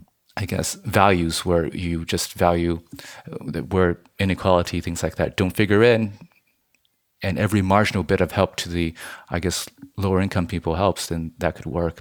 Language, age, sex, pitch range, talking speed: English, 30-49, male, 85-105 Hz, 165 wpm